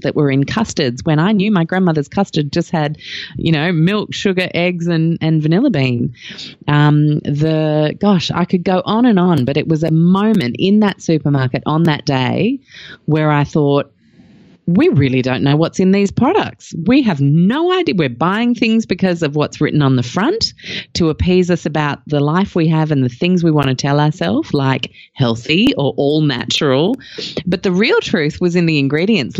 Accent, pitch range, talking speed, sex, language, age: Australian, 140-175 Hz, 195 wpm, female, English, 30-49